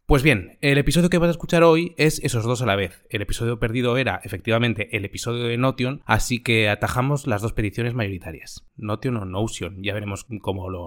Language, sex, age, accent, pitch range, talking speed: English, male, 20-39, Spanish, 105-130 Hz, 210 wpm